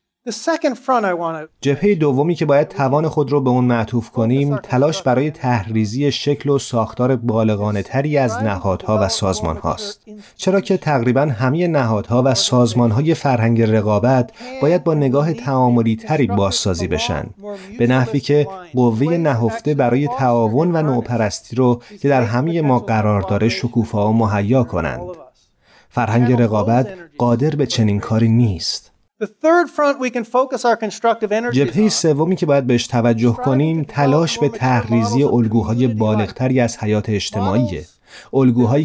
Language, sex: Persian, male